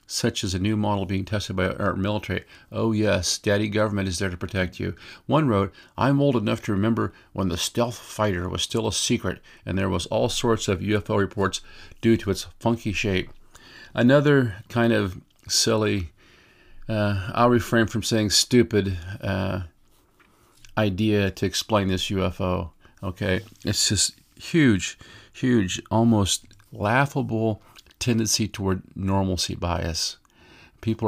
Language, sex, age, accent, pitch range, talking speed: English, male, 50-69, American, 95-110 Hz, 140 wpm